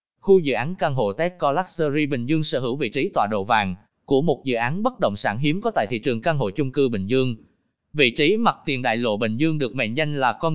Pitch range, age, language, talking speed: 125-170 Hz, 20-39, Vietnamese, 265 wpm